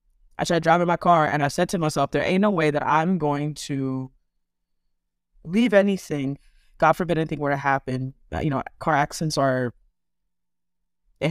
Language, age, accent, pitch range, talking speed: English, 20-39, American, 140-175 Hz, 170 wpm